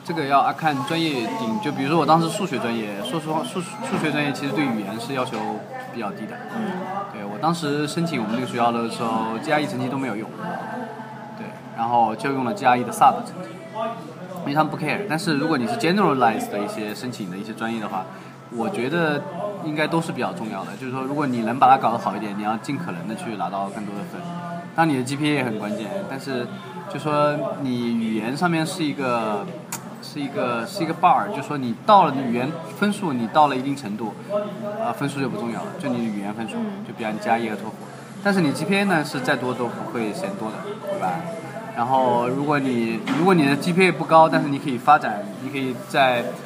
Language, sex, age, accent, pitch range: Chinese, male, 20-39, native, 115-170 Hz